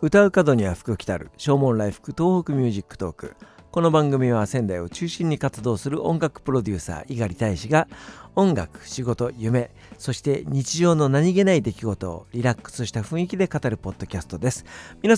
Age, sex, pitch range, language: 50-69, male, 110-155 Hz, Japanese